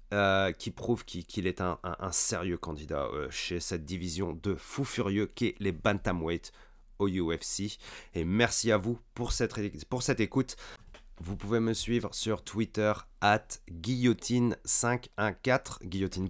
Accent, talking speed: French, 145 wpm